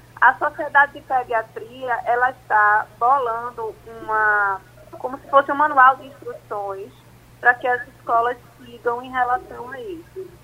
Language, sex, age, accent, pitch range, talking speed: Portuguese, female, 20-39, Brazilian, 215-260 Hz, 140 wpm